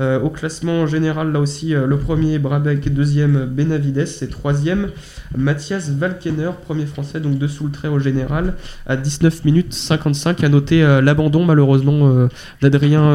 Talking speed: 145 wpm